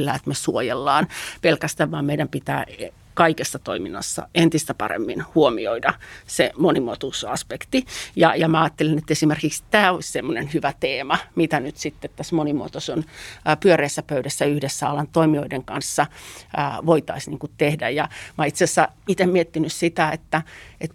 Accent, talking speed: native, 145 wpm